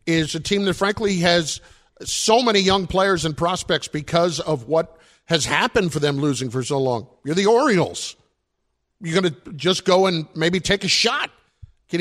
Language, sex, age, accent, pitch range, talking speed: English, male, 50-69, American, 145-190 Hz, 185 wpm